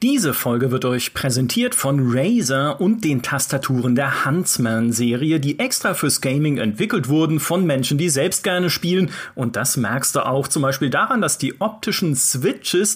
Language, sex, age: German, male, 40-59